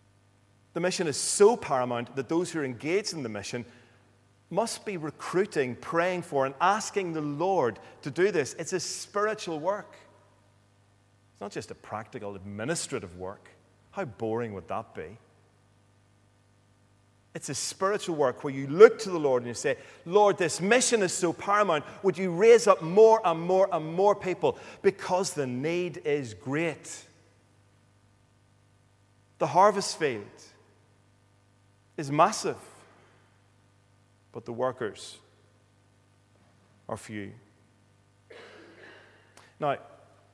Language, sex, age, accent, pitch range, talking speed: English, male, 30-49, British, 100-155 Hz, 130 wpm